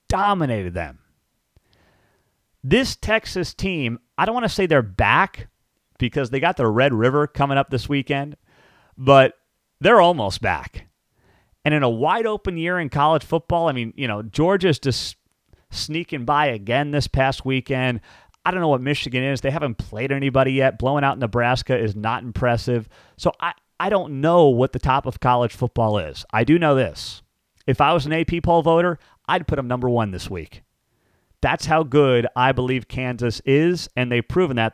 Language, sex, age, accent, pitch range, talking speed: English, male, 40-59, American, 120-155 Hz, 180 wpm